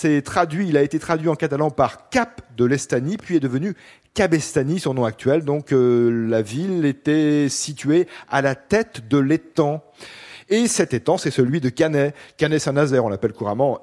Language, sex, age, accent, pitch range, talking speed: French, male, 40-59, French, 125-165 Hz, 180 wpm